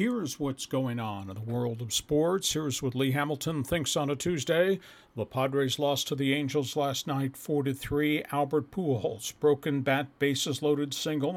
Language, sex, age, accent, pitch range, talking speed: English, male, 50-69, American, 130-155 Hz, 175 wpm